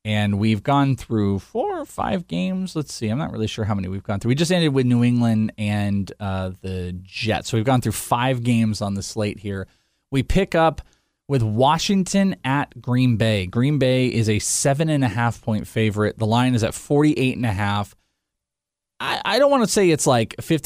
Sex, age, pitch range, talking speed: male, 20-39, 105-135 Hz, 190 wpm